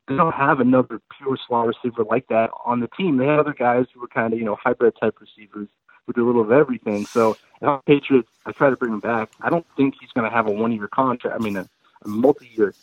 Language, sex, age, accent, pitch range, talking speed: English, male, 30-49, American, 110-135 Hz, 255 wpm